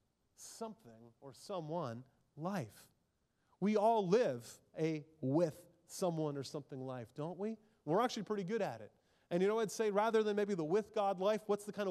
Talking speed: 180 wpm